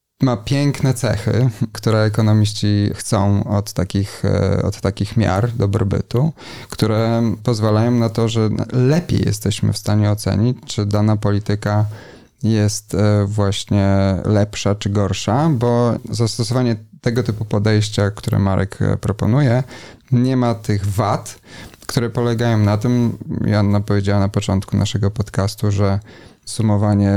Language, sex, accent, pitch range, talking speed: Polish, male, native, 105-120 Hz, 115 wpm